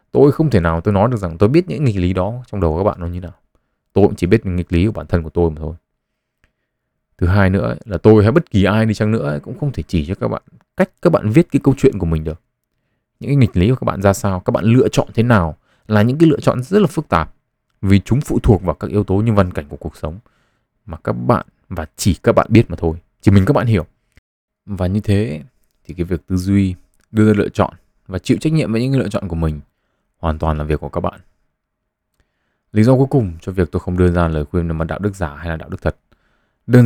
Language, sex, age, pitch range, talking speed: Vietnamese, male, 20-39, 80-110 Hz, 275 wpm